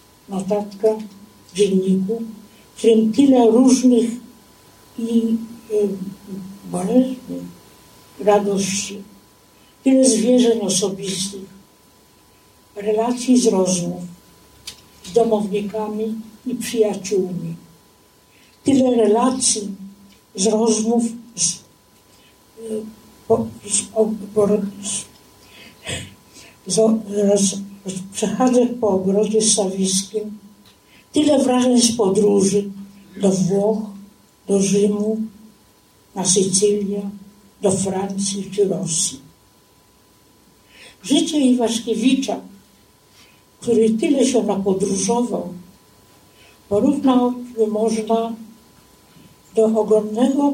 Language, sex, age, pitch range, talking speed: Polish, female, 60-79, 195-230 Hz, 75 wpm